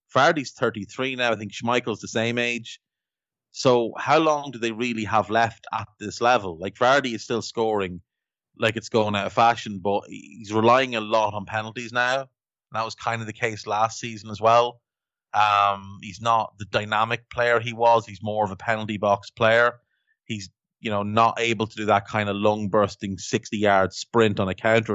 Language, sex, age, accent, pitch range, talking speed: English, male, 30-49, Irish, 105-120 Hz, 195 wpm